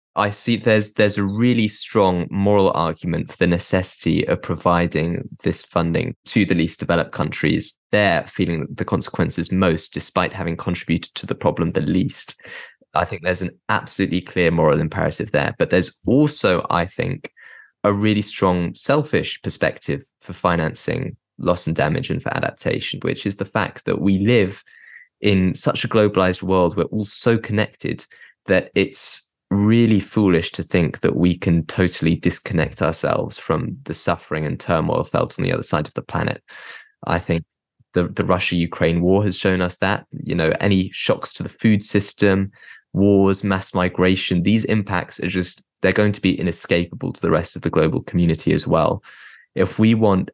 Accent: British